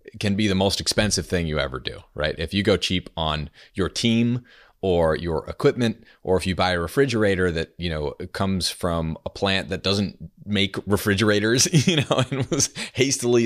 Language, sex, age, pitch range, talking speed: English, male, 30-49, 80-105 Hz, 185 wpm